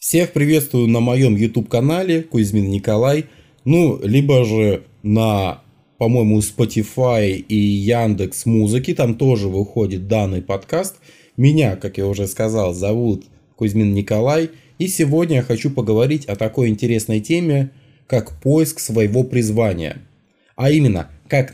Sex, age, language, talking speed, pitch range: male, 20-39, Russian, 125 wpm, 110-145 Hz